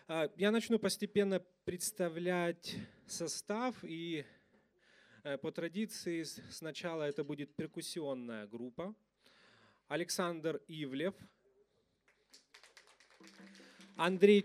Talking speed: 65 wpm